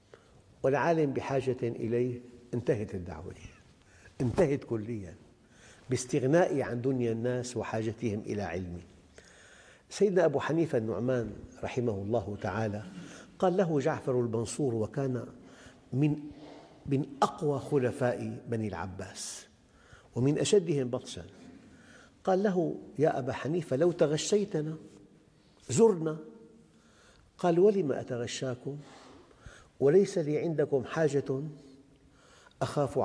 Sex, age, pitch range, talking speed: male, 50-69, 110-145 Hz, 95 wpm